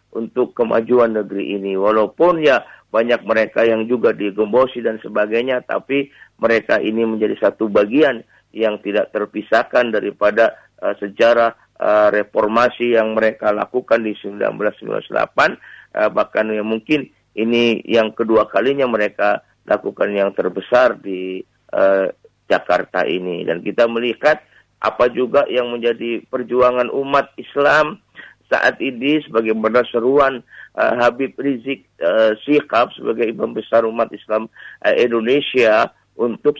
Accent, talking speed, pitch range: native, 120 wpm, 110-130 Hz